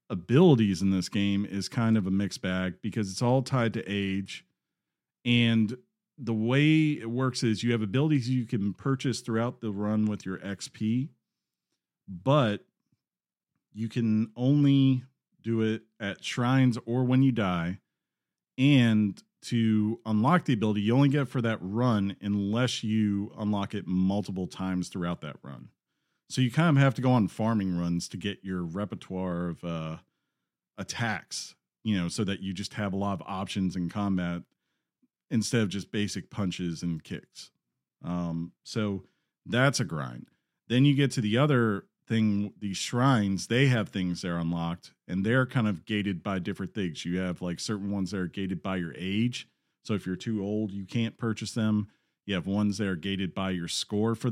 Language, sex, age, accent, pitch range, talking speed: English, male, 40-59, American, 95-120 Hz, 180 wpm